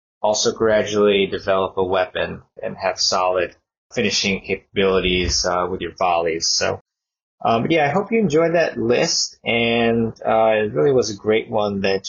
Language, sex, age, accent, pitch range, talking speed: English, male, 20-39, American, 100-125 Hz, 165 wpm